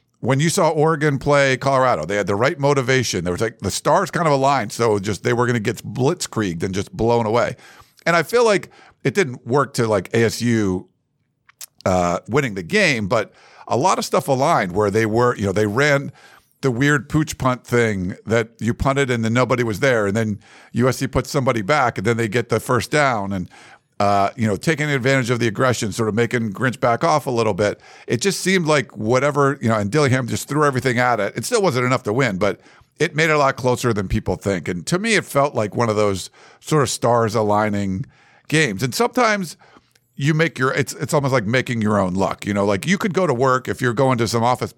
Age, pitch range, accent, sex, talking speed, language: 50-69, 110-140 Hz, American, male, 230 wpm, English